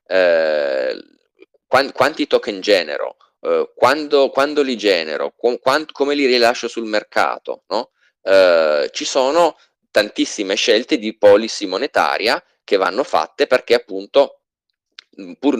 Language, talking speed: Italian, 120 wpm